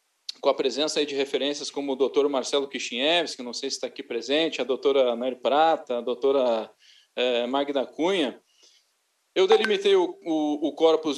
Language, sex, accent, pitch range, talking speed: Portuguese, male, Brazilian, 140-165 Hz, 170 wpm